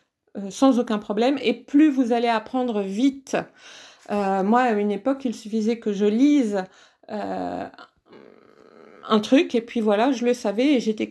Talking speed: 160 wpm